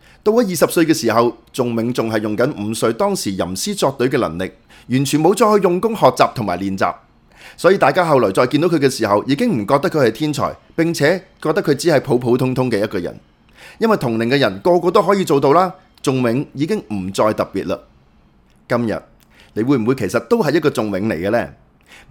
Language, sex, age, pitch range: Chinese, male, 30-49, 115-180 Hz